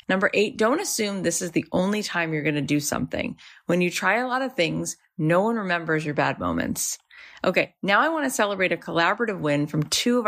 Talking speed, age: 230 wpm, 30-49